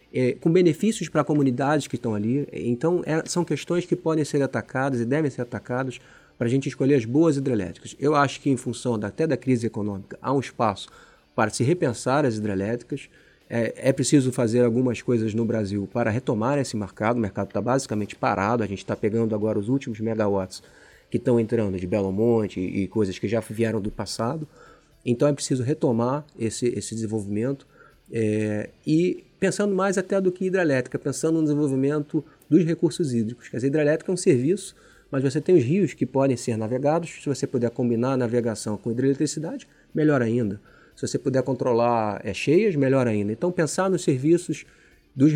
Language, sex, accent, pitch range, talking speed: Portuguese, male, Brazilian, 115-150 Hz, 190 wpm